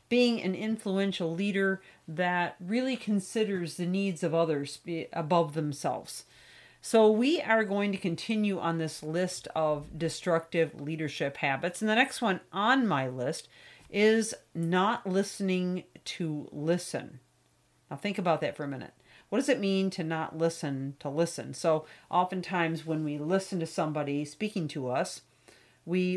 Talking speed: 150 wpm